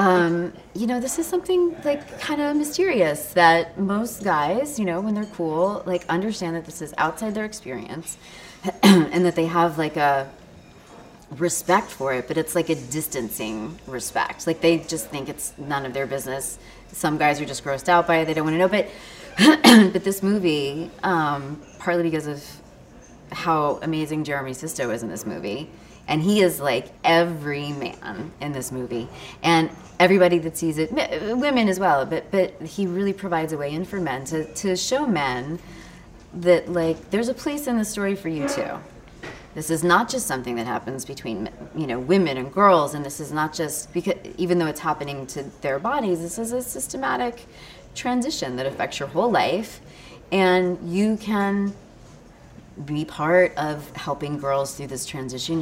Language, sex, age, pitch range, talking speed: English, female, 30-49, 145-195 Hz, 180 wpm